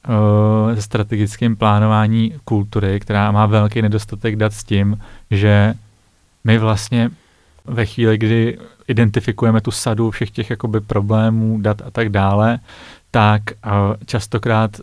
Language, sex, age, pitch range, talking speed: Czech, male, 30-49, 105-115 Hz, 115 wpm